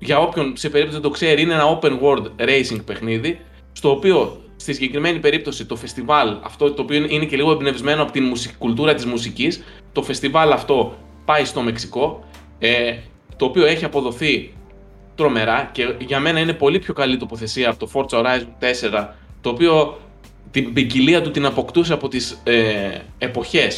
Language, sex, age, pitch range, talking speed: Greek, male, 20-39, 125-155 Hz, 165 wpm